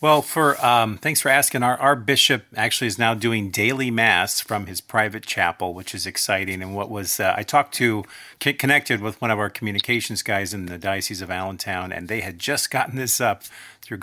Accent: American